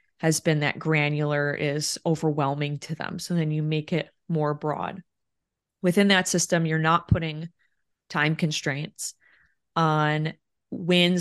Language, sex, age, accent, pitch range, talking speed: English, female, 20-39, American, 155-180 Hz, 135 wpm